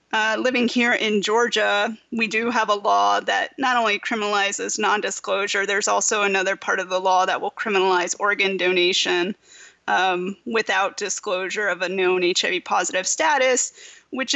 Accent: American